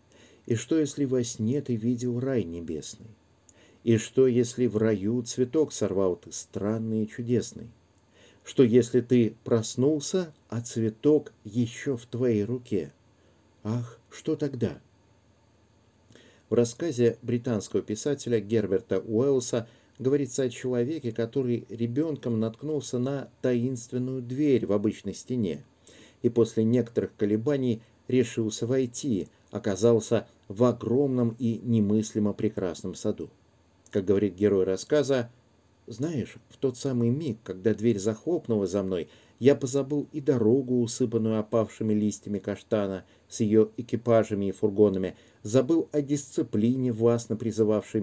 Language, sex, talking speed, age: Russian, male, 120 wpm, 50-69